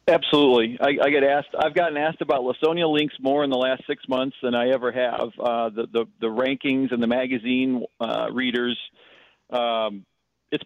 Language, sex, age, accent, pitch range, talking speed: English, male, 50-69, American, 120-145 Hz, 185 wpm